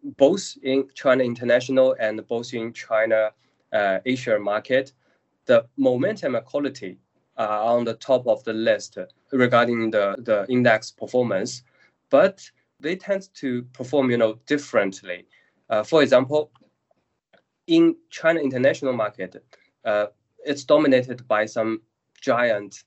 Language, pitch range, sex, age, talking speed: English, 110-140 Hz, male, 20-39, 125 wpm